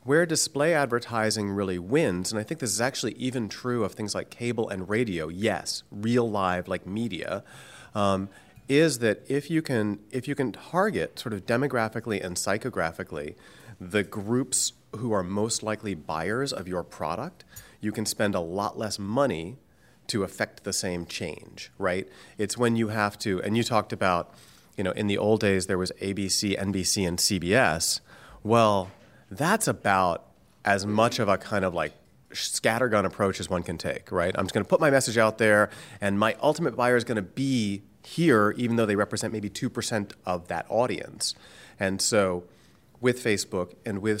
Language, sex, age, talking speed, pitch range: English, male, 30-49, 180 wpm, 100-120 Hz